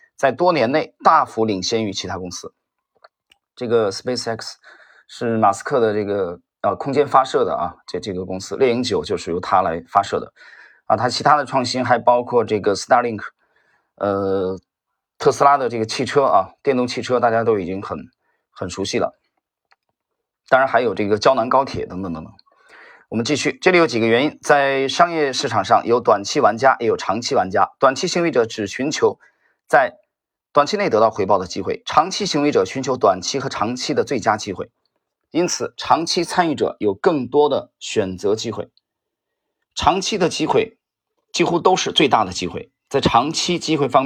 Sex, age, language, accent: male, 30-49, Chinese, native